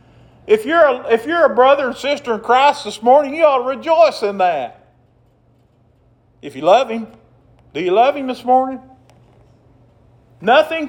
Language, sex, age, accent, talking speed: English, male, 50-69, American, 155 wpm